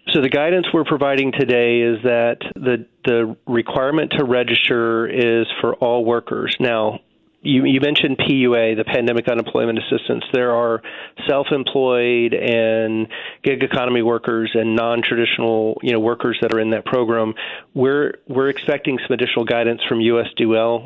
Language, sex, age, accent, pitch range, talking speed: English, male, 40-59, American, 115-130 Hz, 145 wpm